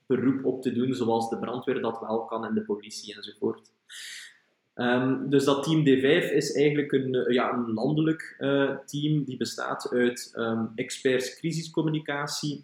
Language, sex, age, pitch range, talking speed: Dutch, male, 20-39, 125-145 Hz, 155 wpm